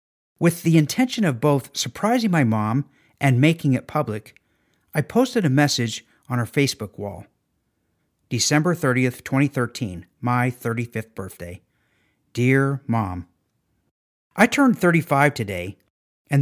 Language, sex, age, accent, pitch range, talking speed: English, male, 50-69, American, 110-160 Hz, 120 wpm